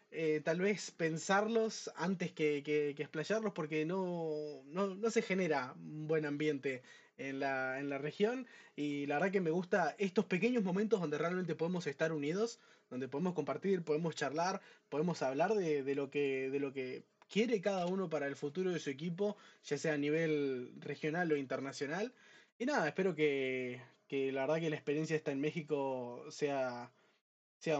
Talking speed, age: 175 wpm, 20-39